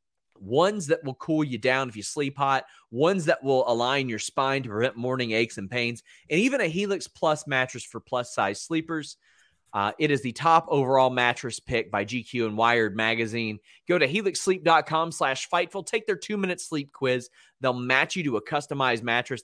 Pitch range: 115-160 Hz